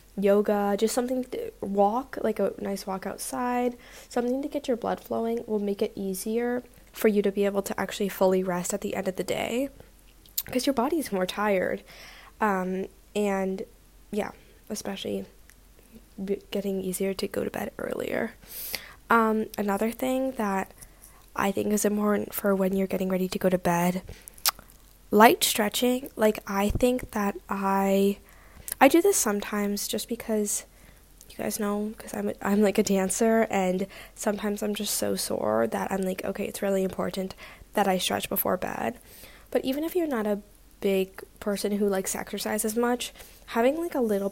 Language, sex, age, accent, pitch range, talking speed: English, female, 10-29, American, 195-225 Hz, 170 wpm